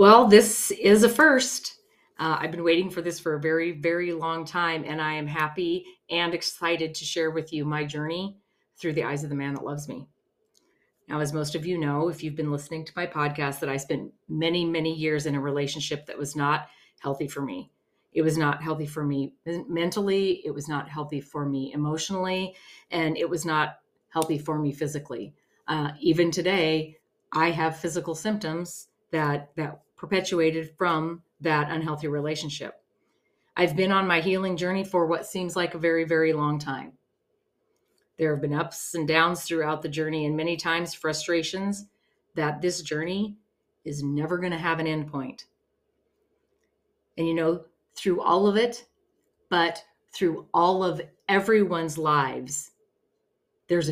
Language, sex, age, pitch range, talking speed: English, female, 40-59, 155-185 Hz, 175 wpm